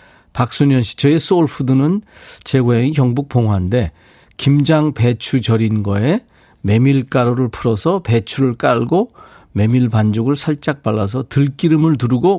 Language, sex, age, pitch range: Korean, male, 40-59, 110-150 Hz